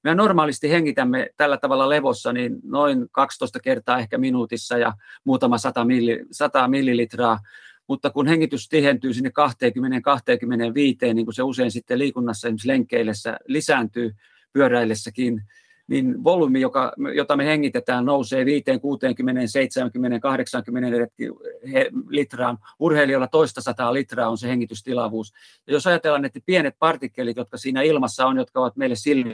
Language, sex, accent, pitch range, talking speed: Finnish, male, native, 120-160 Hz, 130 wpm